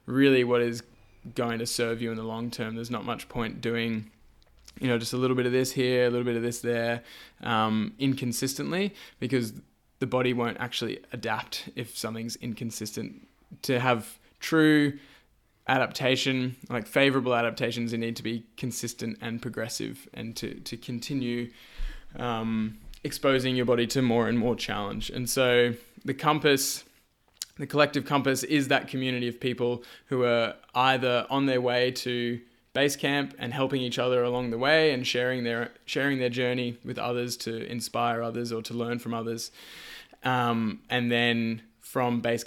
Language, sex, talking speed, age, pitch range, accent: English, male, 165 wpm, 20-39, 115-130 Hz, Australian